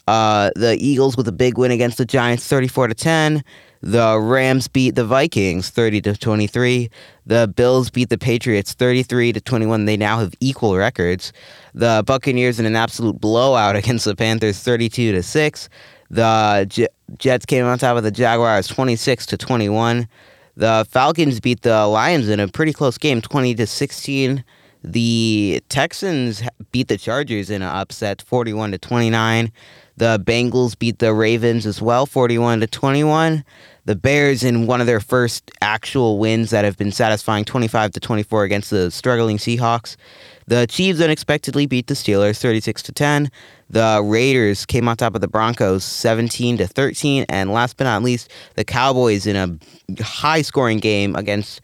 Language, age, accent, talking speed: English, 20-39, American, 160 wpm